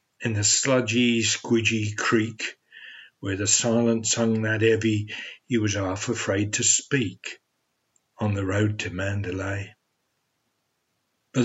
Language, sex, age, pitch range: Thai, male, 60-79, 110-130 Hz